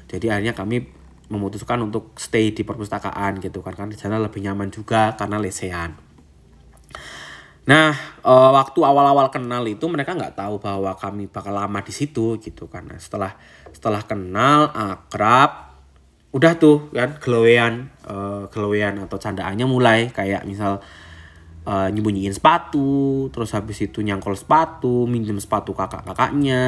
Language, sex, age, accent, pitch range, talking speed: Indonesian, male, 20-39, native, 100-125 Hz, 135 wpm